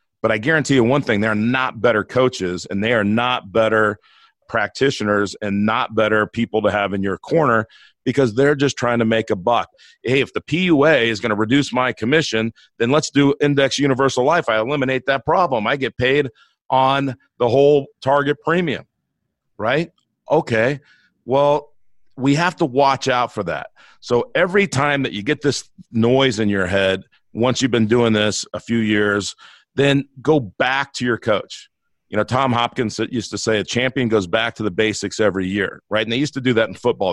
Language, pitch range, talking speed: English, 105-135 Hz, 195 wpm